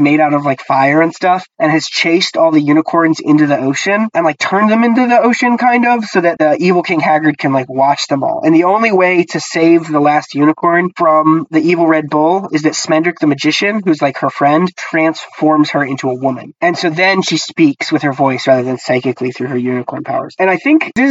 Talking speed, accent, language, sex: 235 wpm, American, English, male